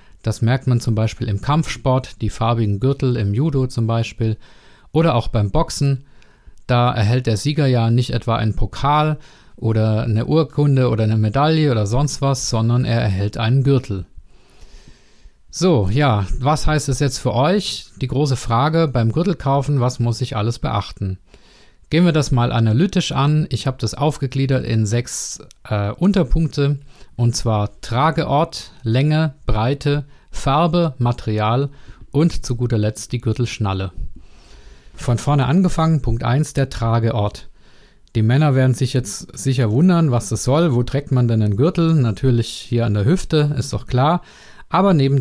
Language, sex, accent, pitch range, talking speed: German, male, German, 115-145 Hz, 160 wpm